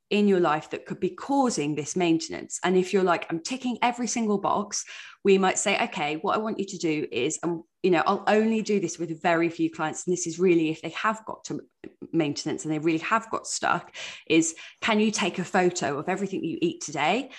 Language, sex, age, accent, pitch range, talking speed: English, female, 20-39, British, 165-205 Hz, 230 wpm